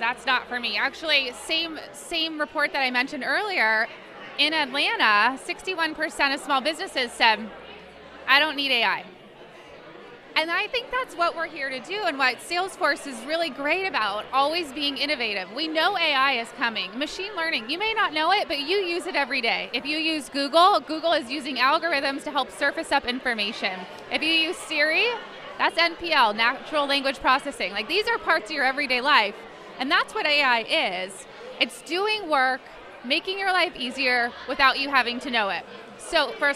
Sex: female